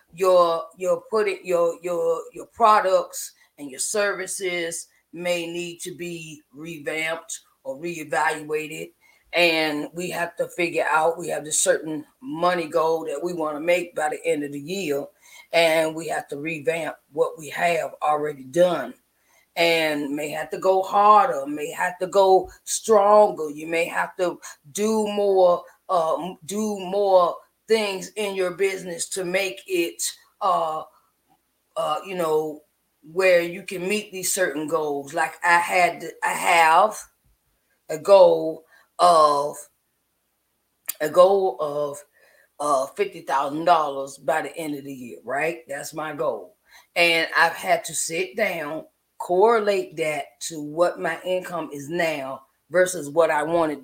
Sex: female